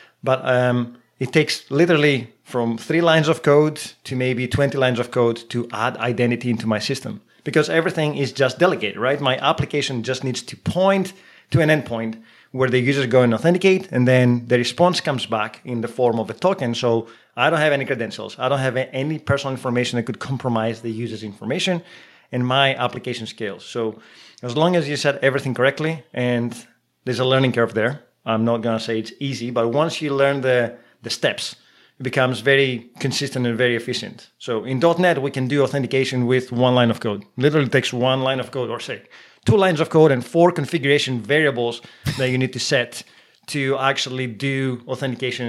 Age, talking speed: 30-49, 195 wpm